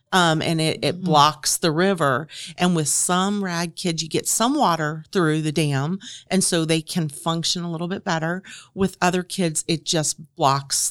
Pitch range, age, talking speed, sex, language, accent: 145-170 Hz, 40-59, 185 wpm, female, English, American